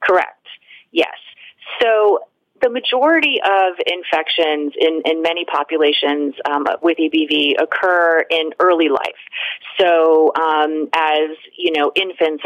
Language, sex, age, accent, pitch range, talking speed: English, female, 30-49, American, 150-215 Hz, 115 wpm